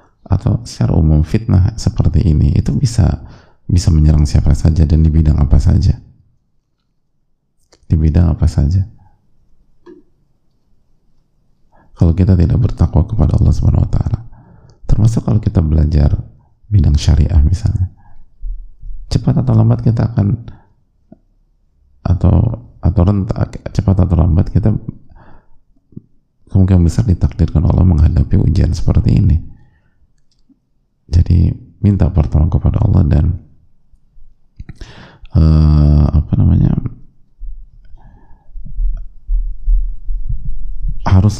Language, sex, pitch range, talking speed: Indonesian, male, 80-105 Hz, 95 wpm